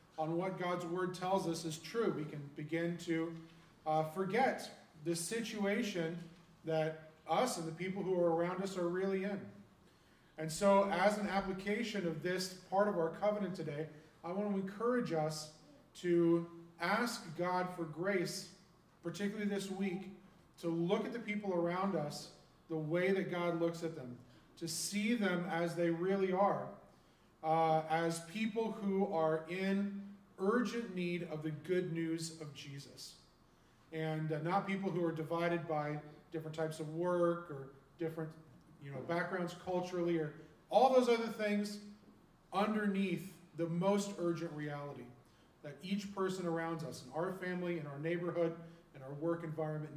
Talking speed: 155 wpm